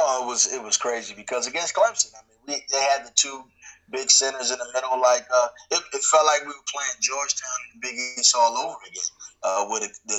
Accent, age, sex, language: American, 20-39, male, English